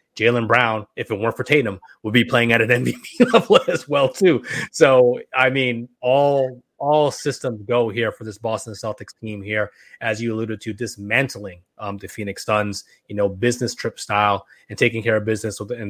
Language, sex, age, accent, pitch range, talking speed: English, male, 20-39, American, 105-125 Hz, 195 wpm